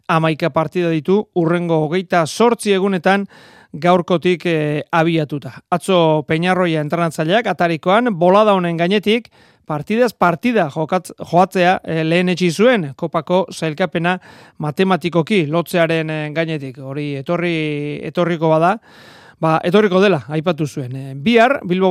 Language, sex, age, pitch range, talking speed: Spanish, male, 40-59, 160-195 Hz, 125 wpm